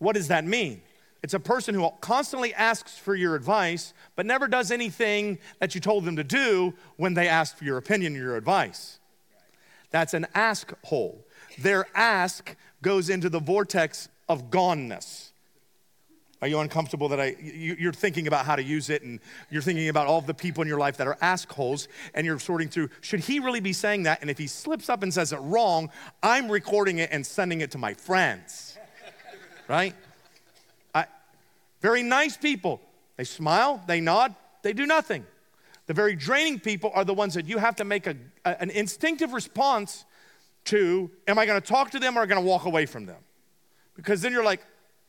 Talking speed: 195 wpm